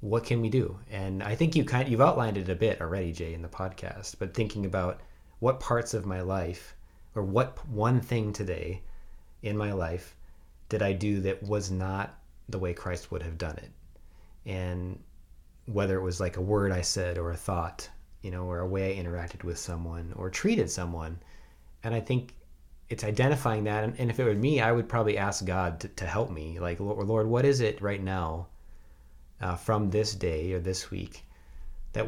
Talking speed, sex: 200 wpm, male